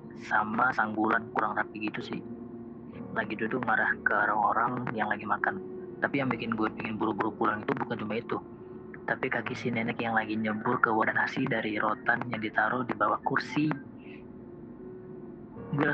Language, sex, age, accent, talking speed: Indonesian, female, 20-39, native, 165 wpm